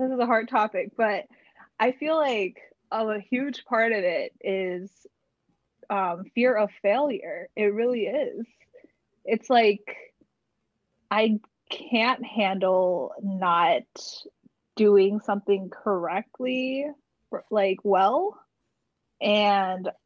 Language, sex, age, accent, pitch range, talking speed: English, female, 10-29, American, 195-245 Hz, 105 wpm